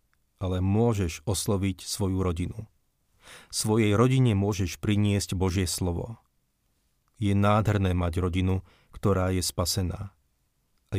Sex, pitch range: male, 90-105 Hz